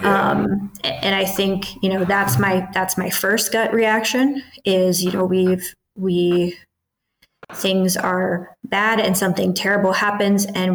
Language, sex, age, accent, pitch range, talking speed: English, female, 20-39, American, 185-210 Hz, 145 wpm